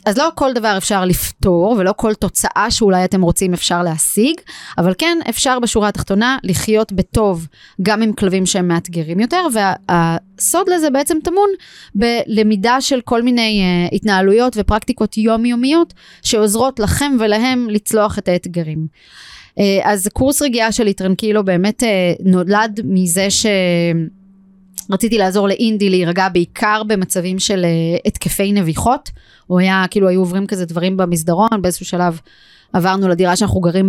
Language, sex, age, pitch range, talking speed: Hebrew, female, 20-39, 185-225 Hz, 145 wpm